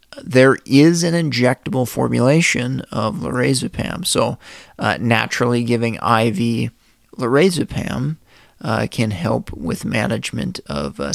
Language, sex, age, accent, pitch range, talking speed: English, male, 30-49, American, 115-140 Hz, 110 wpm